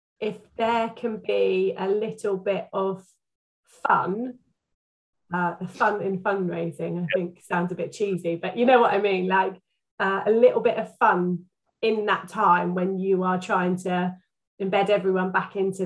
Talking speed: 170 wpm